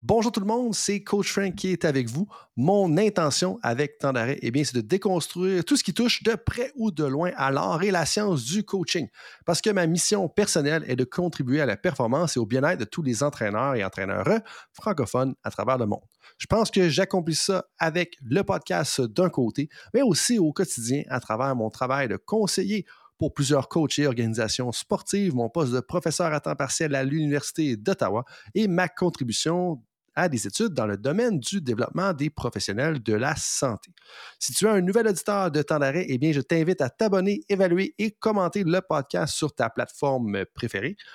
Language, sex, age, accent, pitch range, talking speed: French, male, 30-49, Canadian, 135-195 Hz, 195 wpm